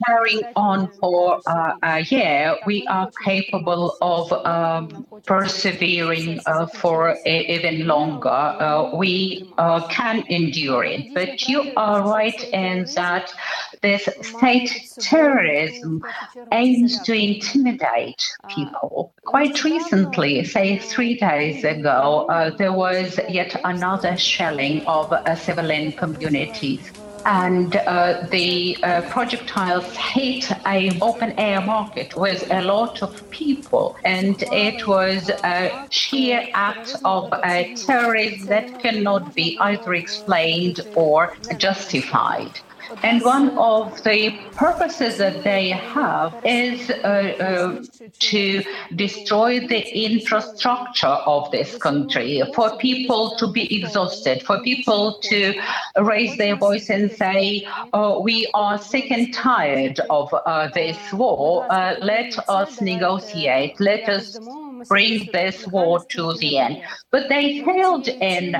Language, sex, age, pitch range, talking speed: English, female, 50-69, 175-230 Hz, 120 wpm